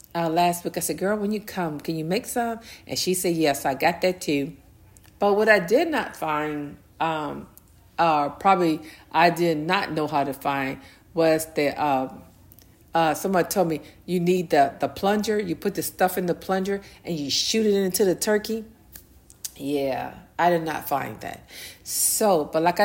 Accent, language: American, English